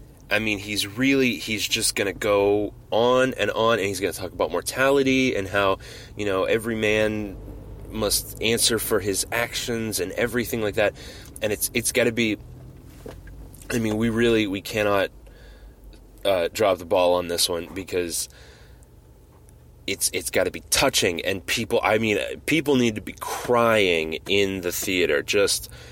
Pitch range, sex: 100-130 Hz, male